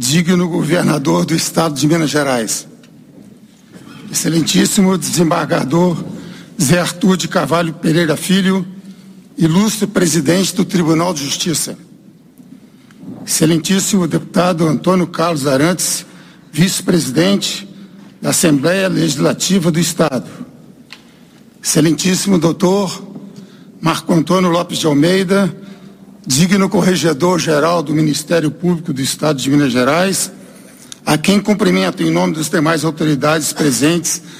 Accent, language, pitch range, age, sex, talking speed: Brazilian, Portuguese, 165-195 Hz, 60-79, male, 100 wpm